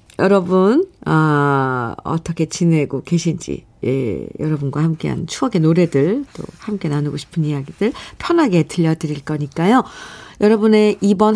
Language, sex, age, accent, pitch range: Korean, female, 50-69, native, 155-225 Hz